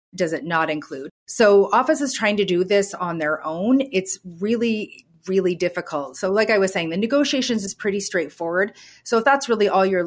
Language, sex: English, female